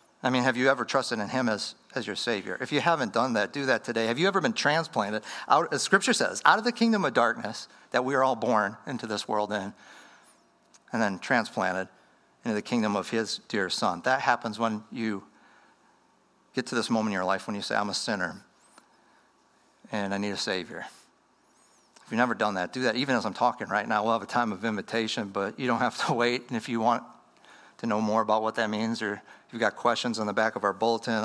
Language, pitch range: English, 110-150 Hz